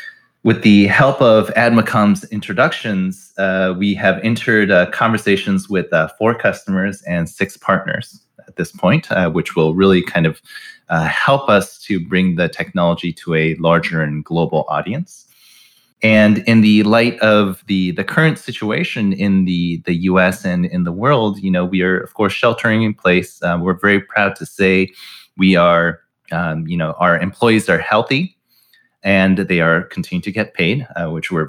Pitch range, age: 85-105 Hz, 30-49